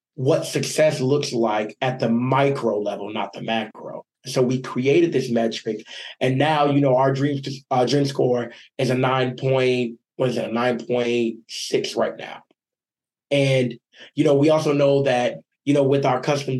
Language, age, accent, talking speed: English, 20-39, American, 165 wpm